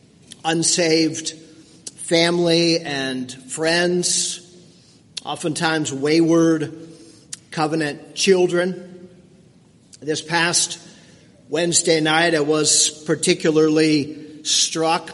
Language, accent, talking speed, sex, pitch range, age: English, American, 65 wpm, male, 155-175 Hz, 50-69